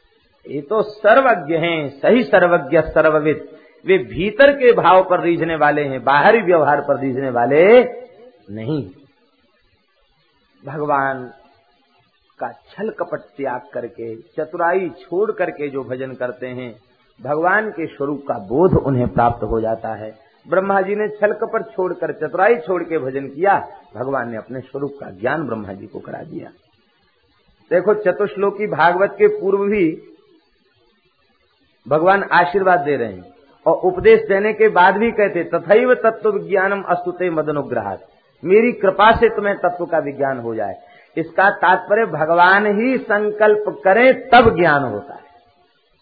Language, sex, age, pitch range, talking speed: Hindi, male, 50-69, 140-205 Hz, 140 wpm